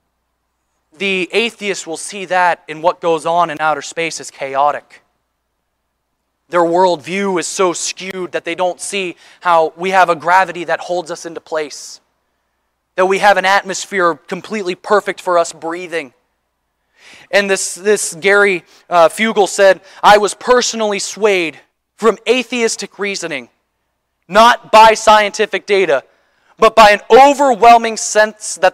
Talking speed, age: 140 wpm, 20-39